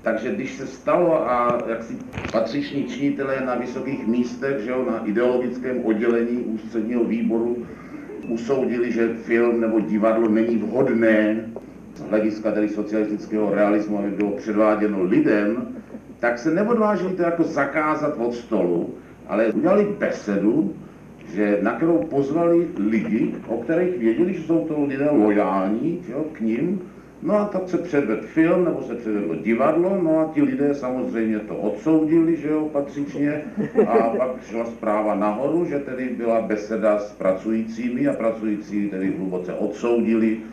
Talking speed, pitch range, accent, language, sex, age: 145 wpm, 105-160 Hz, native, Czech, male, 50-69